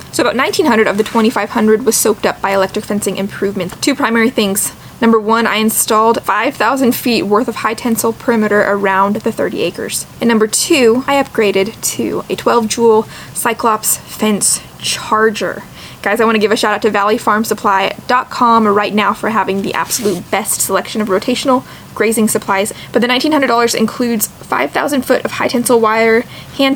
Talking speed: 170 wpm